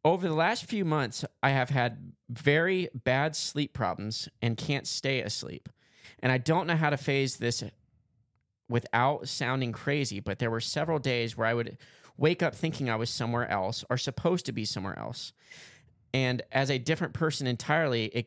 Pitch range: 120-150 Hz